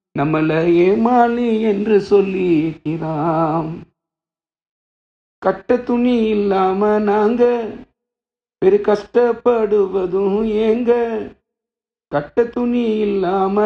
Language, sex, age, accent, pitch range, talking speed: Tamil, male, 50-69, native, 165-215 Hz, 55 wpm